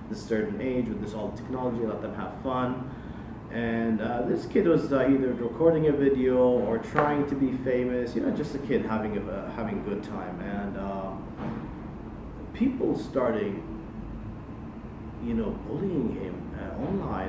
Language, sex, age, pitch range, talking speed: English, male, 30-49, 110-125 Hz, 165 wpm